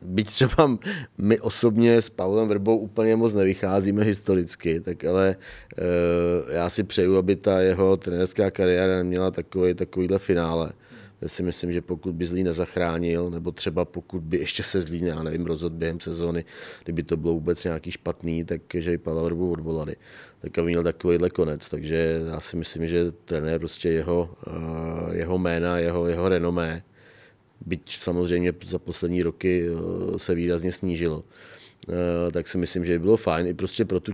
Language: Czech